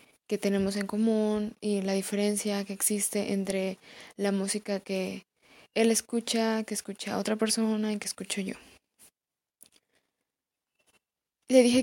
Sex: female